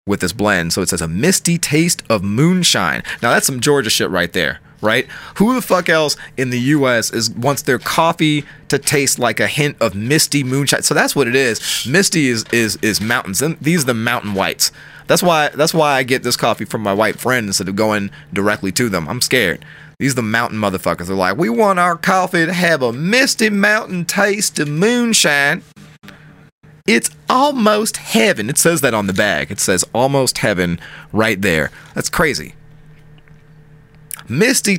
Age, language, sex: 30-49, English, male